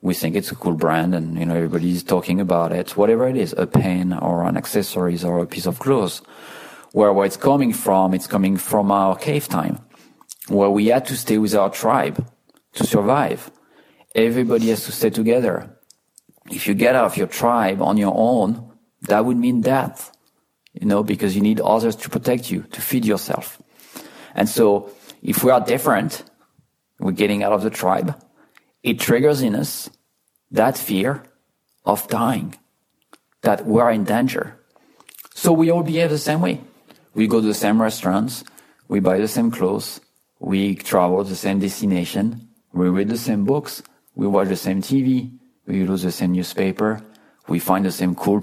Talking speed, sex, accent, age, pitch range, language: 180 wpm, male, French, 40-59, 90-110 Hz, English